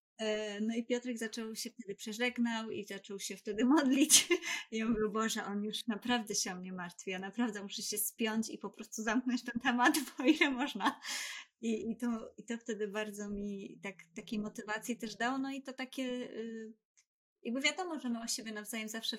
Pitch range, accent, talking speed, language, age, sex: 200-235 Hz, native, 205 wpm, Polish, 20-39, female